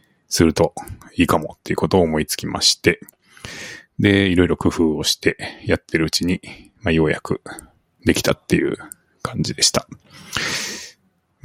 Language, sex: Japanese, male